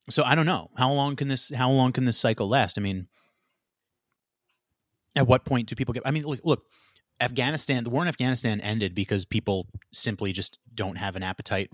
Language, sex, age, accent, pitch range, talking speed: English, male, 30-49, American, 100-130 Hz, 205 wpm